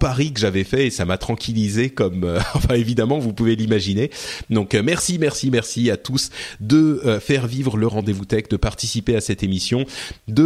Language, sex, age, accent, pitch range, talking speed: French, male, 30-49, French, 105-145 Hz, 195 wpm